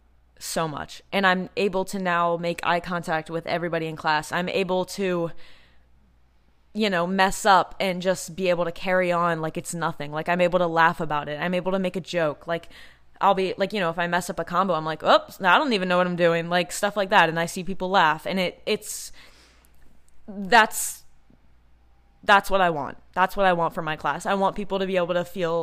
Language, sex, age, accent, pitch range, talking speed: English, female, 20-39, American, 155-195 Hz, 230 wpm